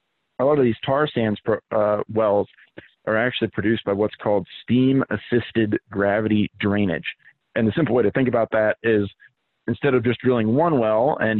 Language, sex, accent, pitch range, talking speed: English, male, American, 105-120 Hz, 180 wpm